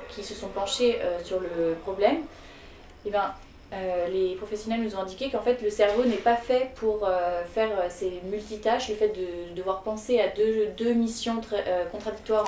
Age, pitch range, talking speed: 20-39, 190-245 Hz, 200 wpm